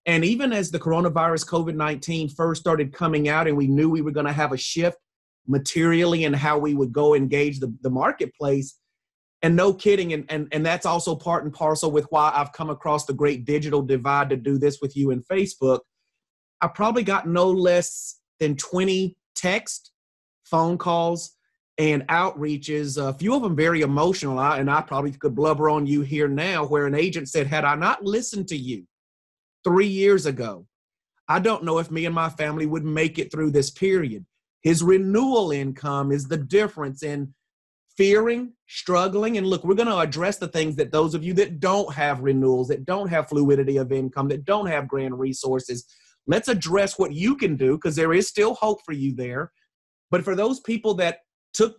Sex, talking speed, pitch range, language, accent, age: male, 190 wpm, 145-185 Hz, English, American, 30-49